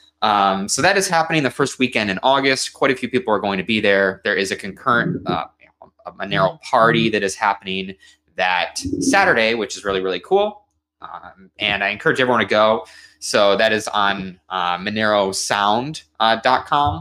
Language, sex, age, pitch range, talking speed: English, male, 20-39, 90-125 Hz, 175 wpm